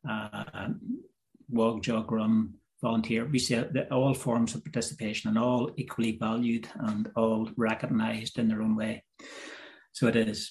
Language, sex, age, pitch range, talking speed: English, male, 30-49, 115-130 Hz, 150 wpm